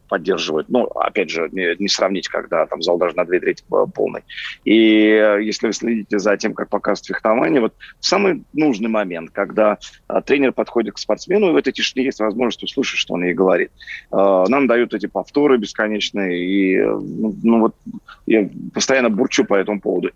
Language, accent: Russian, native